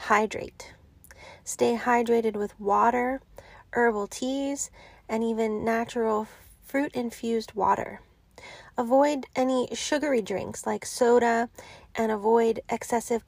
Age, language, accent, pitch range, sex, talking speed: 30-49, English, American, 220-255 Hz, female, 100 wpm